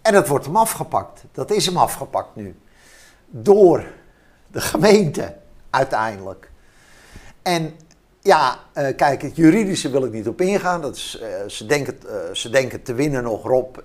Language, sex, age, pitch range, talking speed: Dutch, male, 50-69, 125-185 Hz, 135 wpm